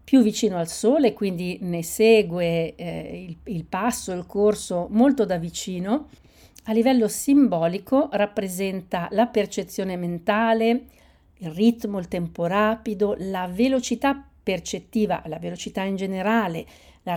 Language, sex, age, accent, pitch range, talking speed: Italian, female, 50-69, native, 175-225 Hz, 125 wpm